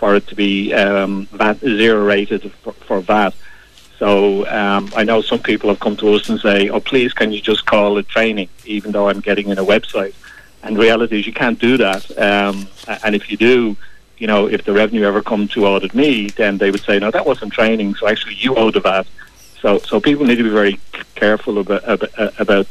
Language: English